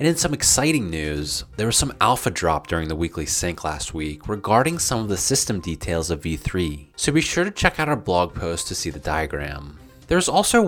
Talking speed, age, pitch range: 225 wpm, 30-49, 85-130 Hz